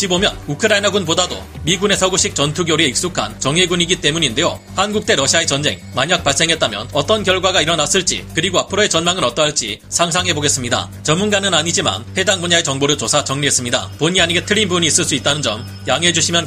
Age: 30-49